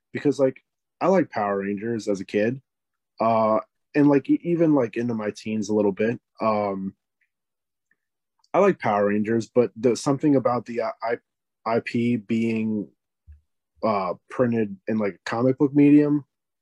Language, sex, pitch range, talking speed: English, male, 105-125 Hz, 140 wpm